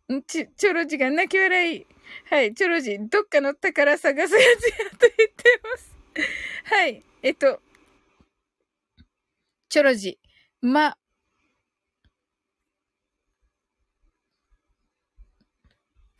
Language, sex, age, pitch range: Japanese, female, 20-39, 285-410 Hz